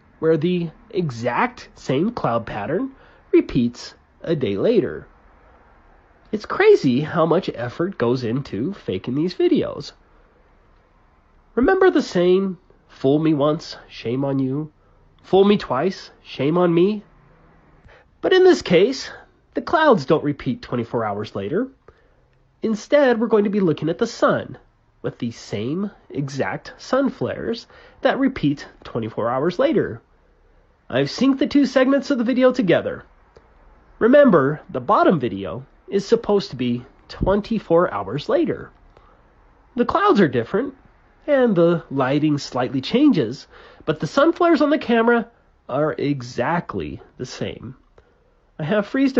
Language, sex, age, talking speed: English, male, 30-49, 135 wpm